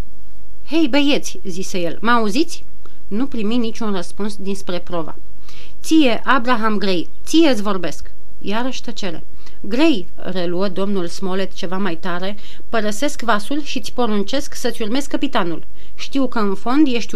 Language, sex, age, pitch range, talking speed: Romanian, female, 30-49, 190-250 Hz, 135 wpm